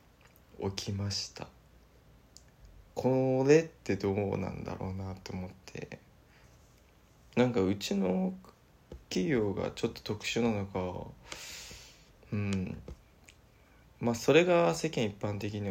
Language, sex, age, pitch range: Japanese, male, 20-39, 100-120 Hz